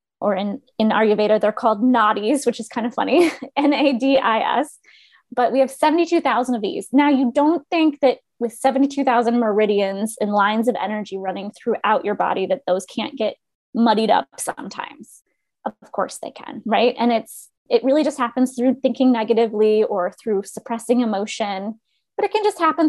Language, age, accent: English, 20-39, American